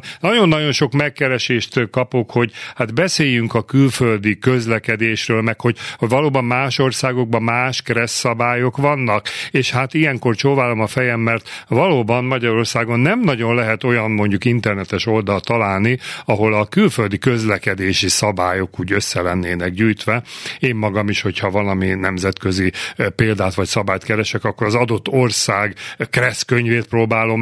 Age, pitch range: 40-59, 95-125 Hz